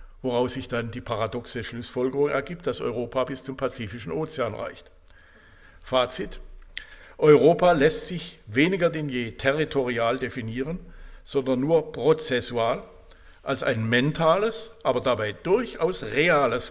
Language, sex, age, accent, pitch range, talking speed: German, male, 60-79, German, 120-150 Hz, 120 wpm